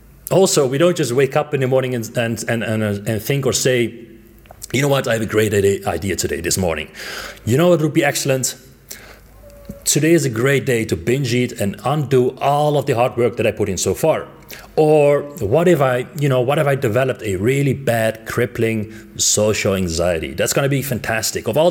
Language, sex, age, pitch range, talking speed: English, male, 30-49, 105-135 Hz, 210 wpm